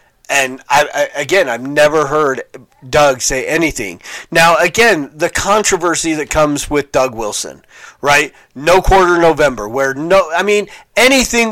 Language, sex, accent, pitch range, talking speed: English, male, American, 135-180 Hz, 140 wpm